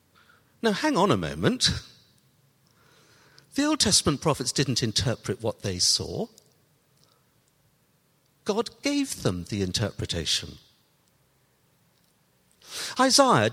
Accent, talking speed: British, 90 wpm